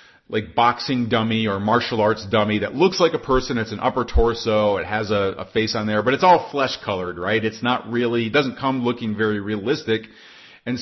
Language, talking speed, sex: English, 215 wpm, male